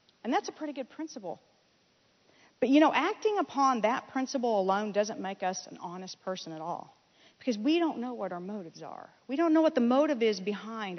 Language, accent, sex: English, American, female